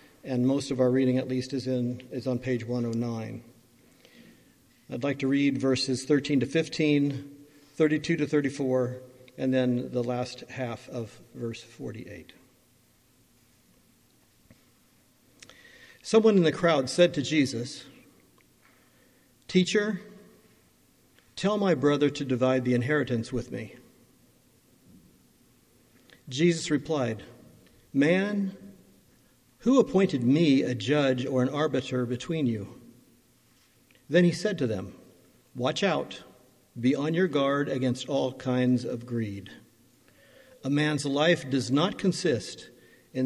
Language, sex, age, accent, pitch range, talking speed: English, male, 50-69, American, 125-150 Hz, 120 wpm